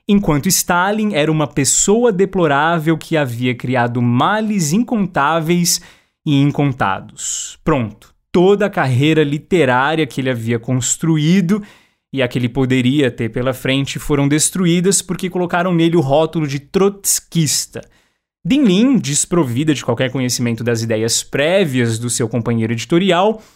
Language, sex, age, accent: Portuguese, male, 20-39, Brazilian